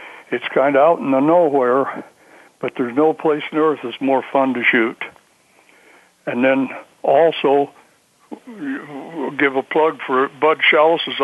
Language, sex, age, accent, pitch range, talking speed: English, male, 60-79, American, 135-155 Hz, 150 wpm